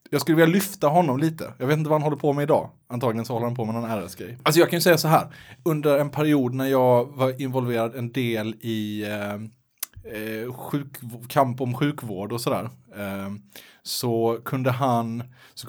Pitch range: 105-135 Hz